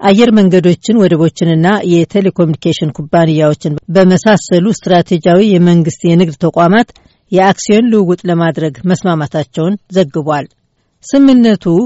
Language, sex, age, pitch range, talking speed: Amharic, female, 60-79, 165-200 Hz, 80 wpm